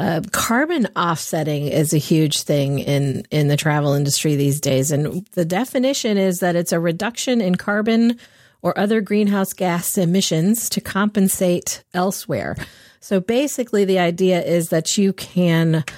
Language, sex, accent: English, female, American